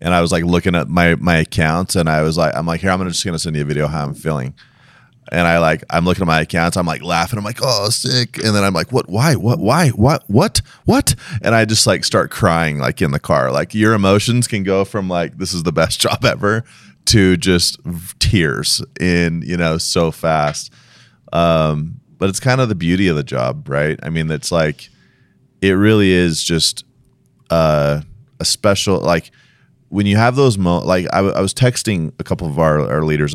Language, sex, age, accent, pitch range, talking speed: English, male, 30-49, American, 80-100 Hz, 220 wpm